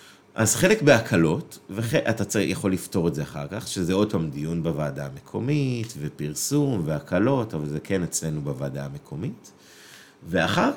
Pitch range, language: 90-135 Hz, Hebrew